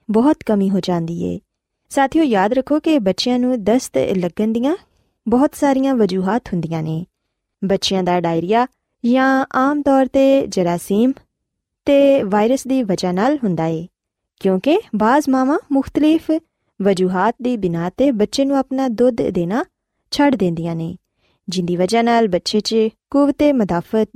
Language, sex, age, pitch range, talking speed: Punjabi, female, 20-39, 185-270 Hz, 140 wpm